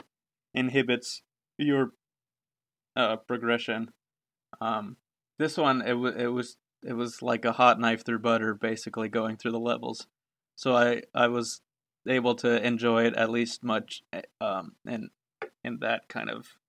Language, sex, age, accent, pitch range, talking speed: English, male, 20-39, American, 115-135 Hz, 145 wpm